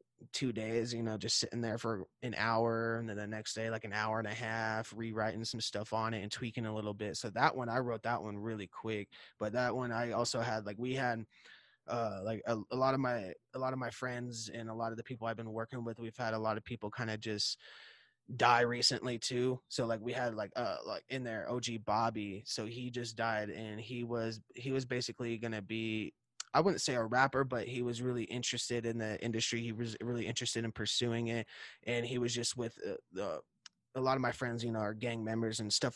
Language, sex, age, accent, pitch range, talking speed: English, male, 20-39, American, 110-120 Hz, 240 wpm